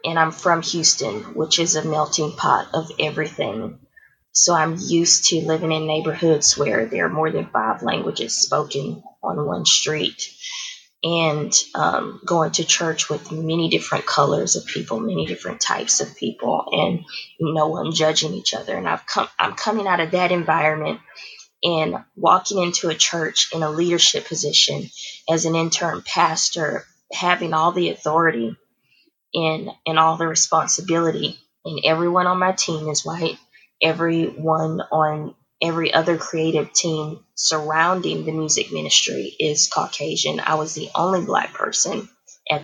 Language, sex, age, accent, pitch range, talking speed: English, female, 20-39, American, 155-170 Hz, 155 wpm